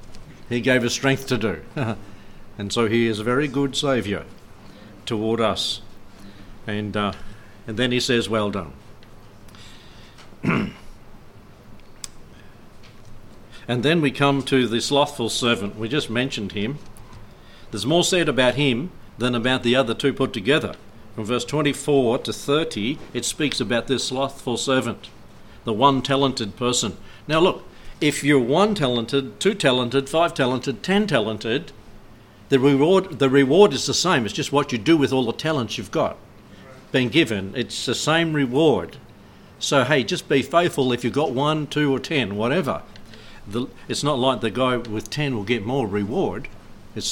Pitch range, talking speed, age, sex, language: 110-140 Hz, 160 wpm, 60-79, male, English